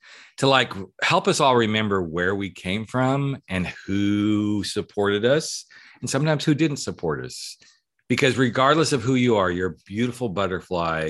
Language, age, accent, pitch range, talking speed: English, 40-59, American, 90-125 Hz, 160 wpm